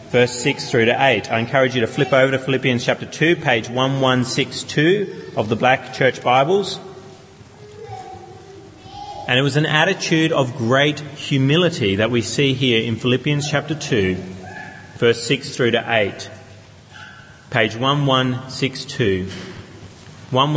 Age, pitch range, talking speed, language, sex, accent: 30-49, 125-160 Hz, 140 wpm, English, male, Australian